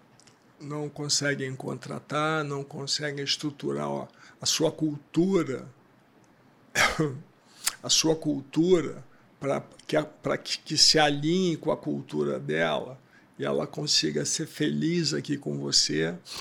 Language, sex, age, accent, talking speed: Portuguese, male, 60-79, Brazilian, 110 wpm